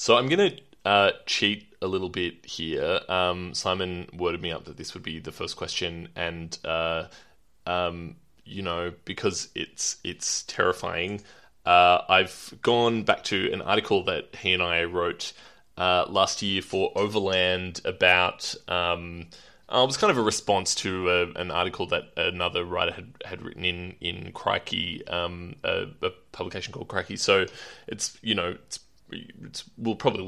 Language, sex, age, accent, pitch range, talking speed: English, male, 20-39, Australian, 90-105 Hz, 165 wpm